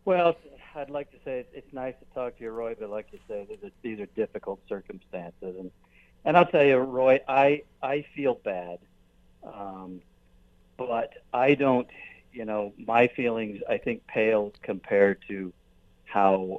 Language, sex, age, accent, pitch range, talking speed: English, male, 50-69, American, 85-120 Hz, 165 wpm